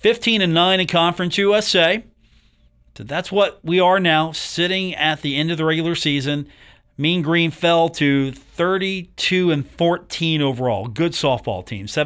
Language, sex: English, male